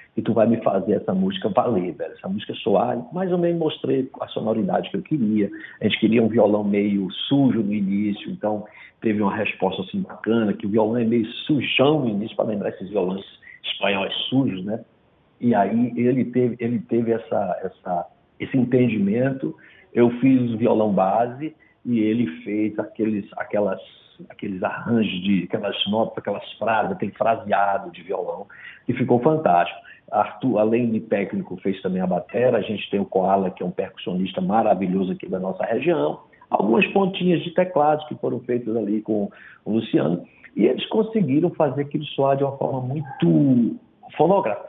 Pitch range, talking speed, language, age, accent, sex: 105-145 Hz, 170 wpm, Portuguese, 60-79, Brazilian, male